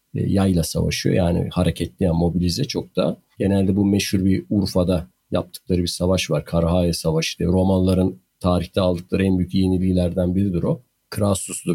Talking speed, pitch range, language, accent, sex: 145 wpm, 90-125 Hz, Turkish, native, male